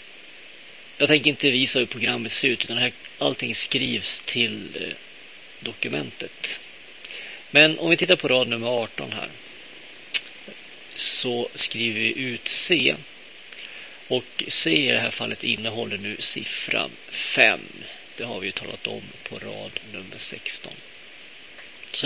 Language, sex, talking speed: Swedish, male, 135 wpm